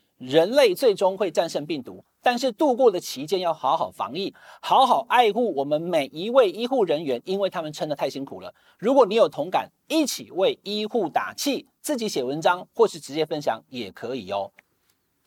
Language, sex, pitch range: Chinese, male, 180-280 Hz